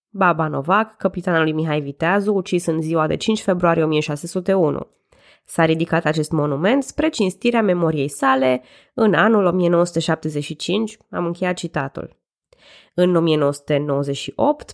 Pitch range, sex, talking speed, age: 155-200 Hz, female, 120 wpm, 20-39